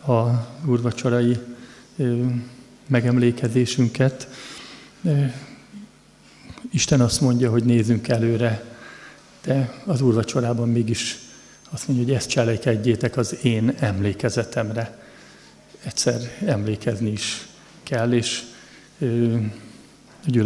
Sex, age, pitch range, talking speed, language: male, 50-69, 115-125 Hz, 80 wpm, Hungarian